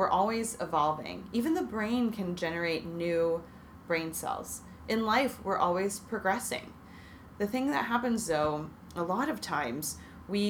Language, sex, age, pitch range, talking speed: English, female, 20-39, 160-195 Hz, 150 wpm